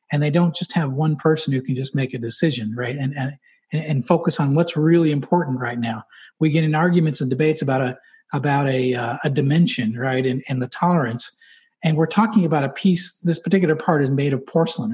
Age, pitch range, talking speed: 40-59, 135-175 Hz, 220 wpm